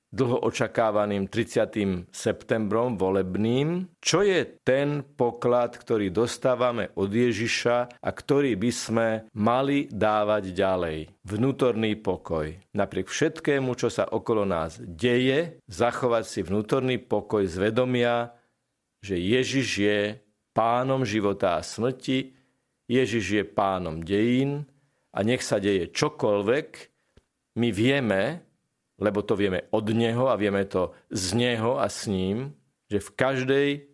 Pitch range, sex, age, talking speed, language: 105-130 Hz, male, 50-69, 120 wpm, Slovak